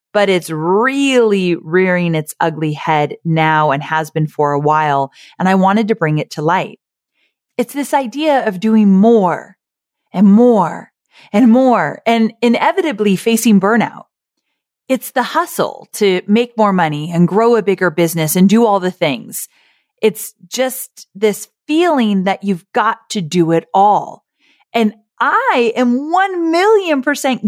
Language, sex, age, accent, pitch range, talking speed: English, female, 30-49, American, 180-250 Hz, 155 wpm